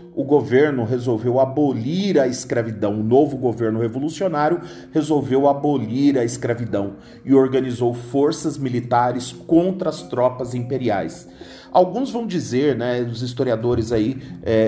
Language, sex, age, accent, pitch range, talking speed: Portuguese, male, 40-59, Brazilian, 115-145 Hz, 125 wpm